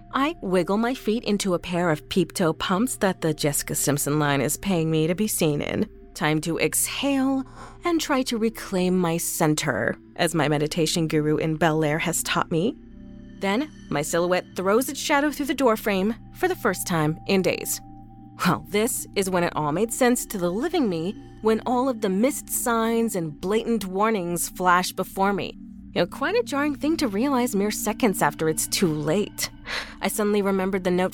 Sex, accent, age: female, American, 30-49